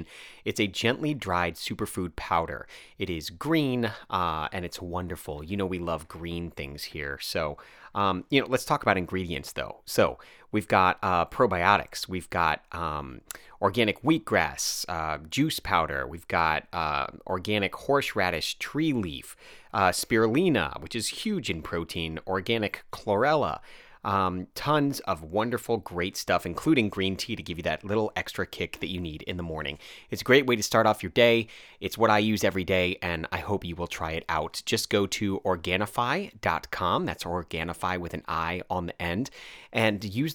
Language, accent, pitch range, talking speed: English, American, 85-105 Hz, 175 wpm